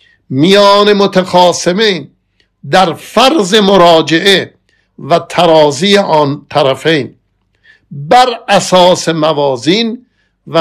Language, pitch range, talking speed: Persian, 145-195 Hz, 75 wpm